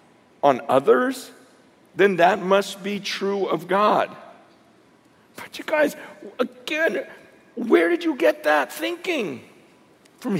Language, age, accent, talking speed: English, 50-69, American, 115 wpm